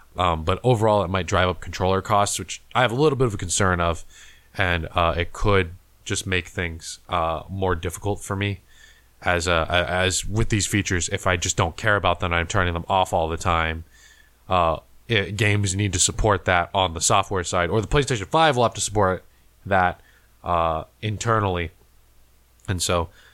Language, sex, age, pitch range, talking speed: English, male, 20-39, 85-100 Hz, 195 wpm